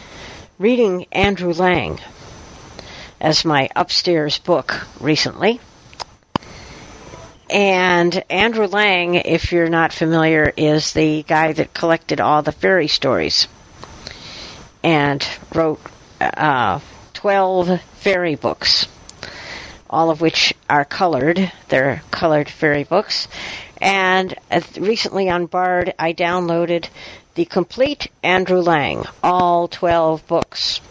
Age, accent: 60-79, American